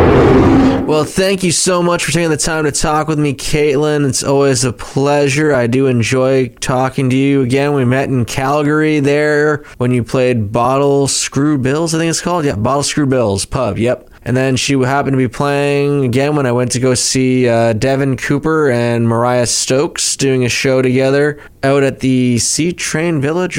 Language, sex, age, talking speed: English, male, 20-39, 195 wpm